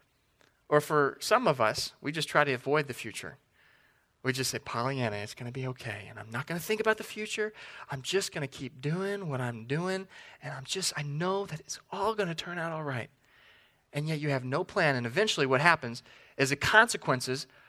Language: English